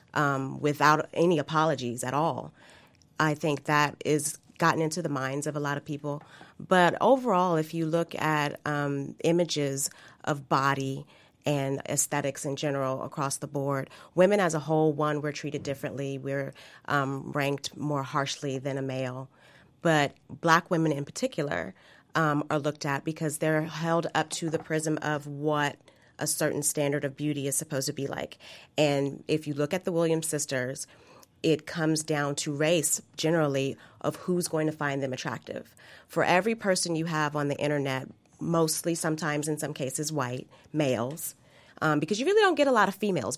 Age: 30-49